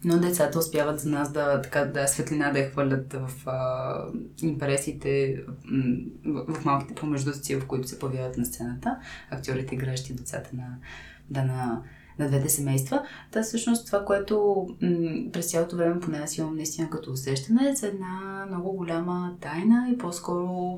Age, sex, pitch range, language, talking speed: 20-39, female, 140-170 Hz, Bulgarian, 165 wpm